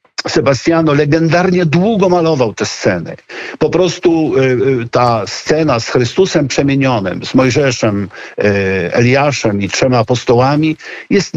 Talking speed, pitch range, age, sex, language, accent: 105 wpm, 115-155 Hz, 50-69, male, Polish, native